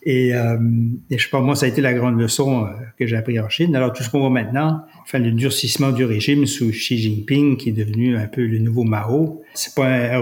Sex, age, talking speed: male, 60-79, 265 wpm